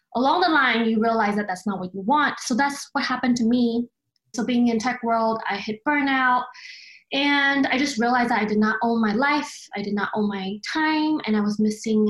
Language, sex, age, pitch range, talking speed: English, female, 20-39, 215-275 Hz, 230 wpm